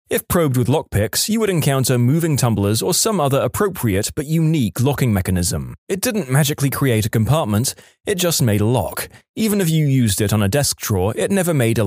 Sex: male